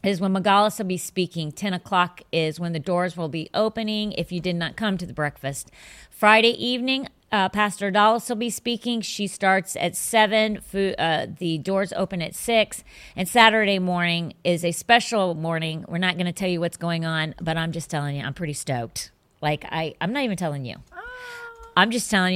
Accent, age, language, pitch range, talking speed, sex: American, 40-59, English, 155-205 Hz, 195 wpm, female